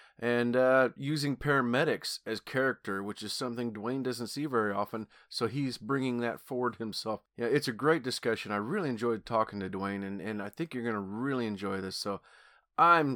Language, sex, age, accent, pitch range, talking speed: English, male, 30-49, American, 105-130 Hz, 195 wpm